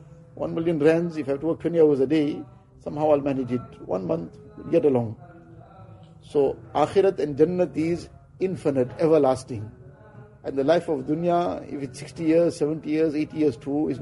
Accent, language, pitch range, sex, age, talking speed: Indian, English, 140-160 Hz, male, 50-69, 180 wpm